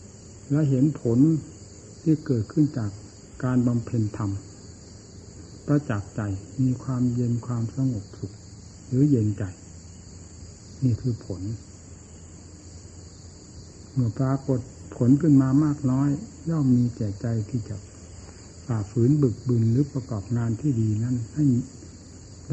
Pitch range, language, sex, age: 95-130 Hz, Thai, male, 60-79